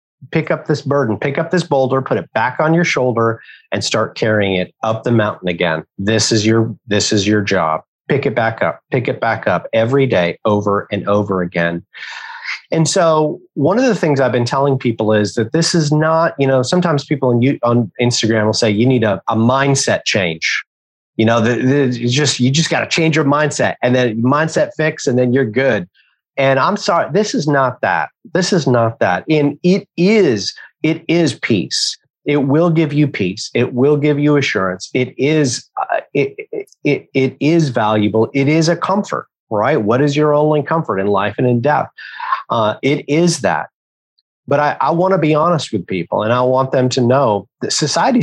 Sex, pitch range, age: male, 115-160 Hz, 30-49